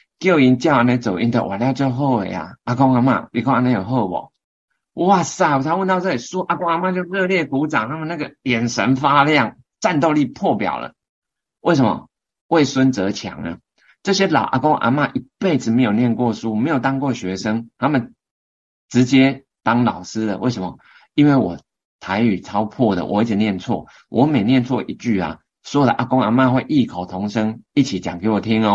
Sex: male